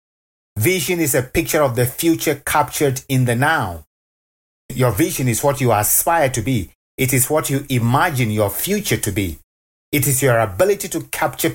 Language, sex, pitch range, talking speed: English, male, 110-150 Hz, 175 wpm